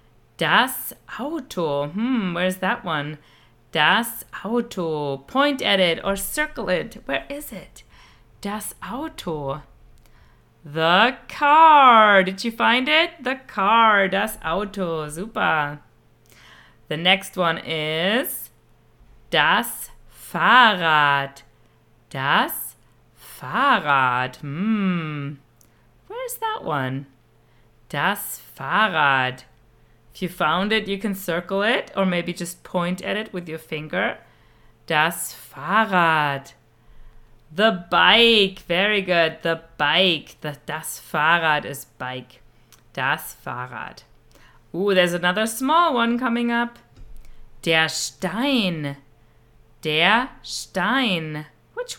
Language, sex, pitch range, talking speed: German, female, 135-200 Hz, 100 wpm